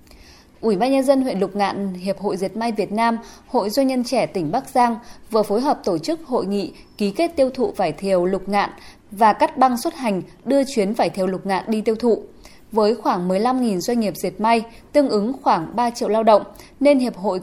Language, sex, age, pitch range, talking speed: Vietnamese, female, 20-39, 195-255 Hz, 225 wpm